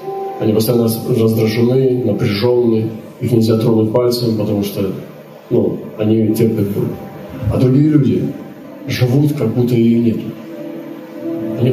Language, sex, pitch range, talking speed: Russian, male, 115-160 Hz, 120 wpm